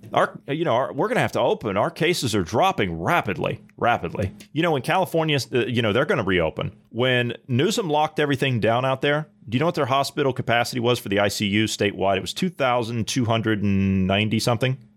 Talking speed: 200 wpm